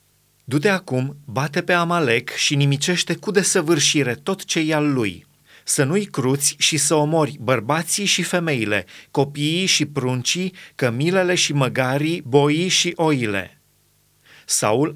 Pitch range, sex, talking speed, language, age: 125-155 Hz, male, 130 wpm, Romanian, 30-49